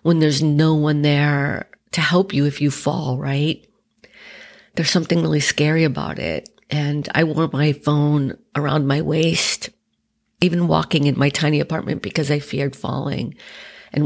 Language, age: English, 50-69